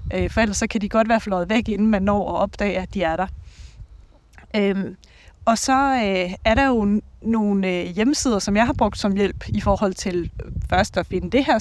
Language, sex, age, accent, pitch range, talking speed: Danish, female, 30-49, native, 195-245 Hz, 200 wpm